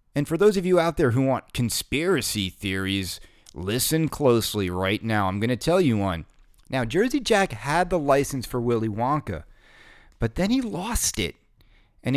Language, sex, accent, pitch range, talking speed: English, male, American, 105-145 Hz, 180 wpm